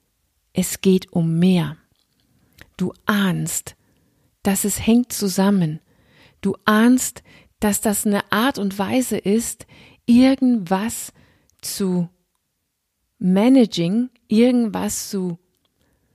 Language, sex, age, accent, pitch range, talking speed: German, female, 40-59, German, 175-220 Hz, 90 wpm